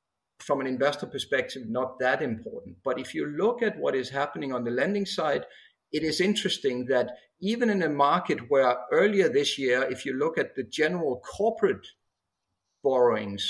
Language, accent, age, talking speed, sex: English, Danish, 50-69, 175 wpm, male